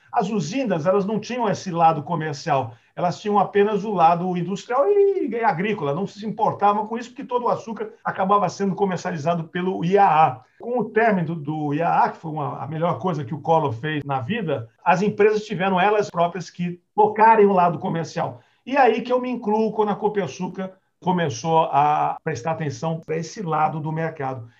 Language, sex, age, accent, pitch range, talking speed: Portuguese, male, 50-69, Brazilian, 155-205 Hz, 185 wpm